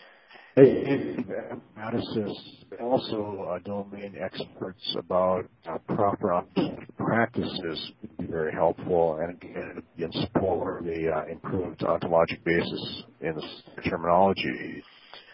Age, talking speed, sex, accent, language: 50-69, 95 wpm, male, American, English